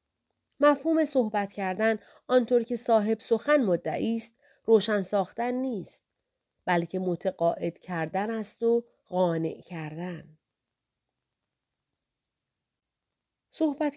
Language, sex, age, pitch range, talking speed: Persian, female, 40-59, 175-240 Hz, 80 wpm